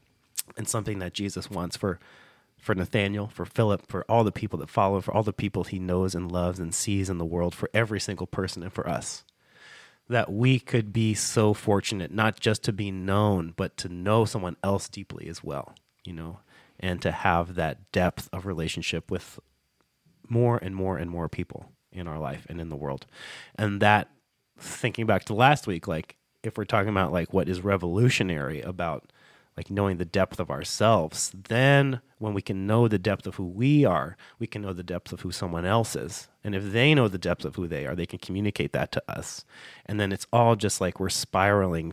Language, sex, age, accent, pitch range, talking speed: English, male, 30-49, American, 90-110 Hz, 210 wpm